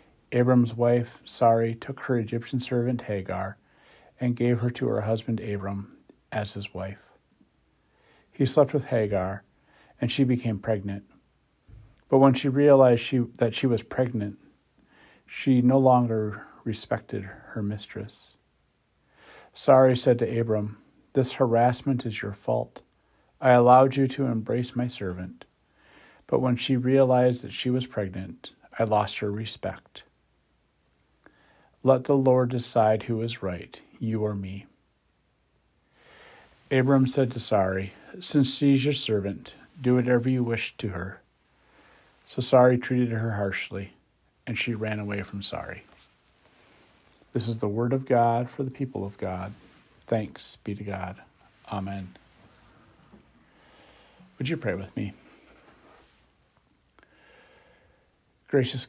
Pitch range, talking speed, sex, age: 105-130 Hz, 130 wpm, male, 50-69